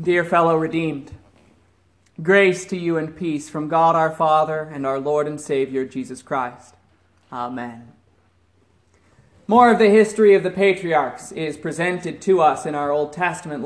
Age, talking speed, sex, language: 30-49, 155 wpm, male, English